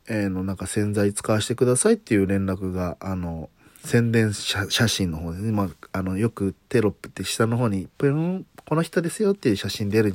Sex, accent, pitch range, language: male, native, 95-115 Hz, Japanese